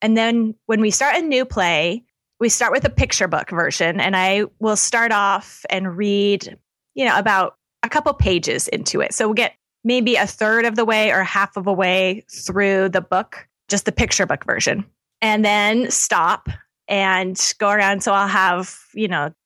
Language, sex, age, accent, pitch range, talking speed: English, female, 20-39, American, 185-225 Hz, 195 wpm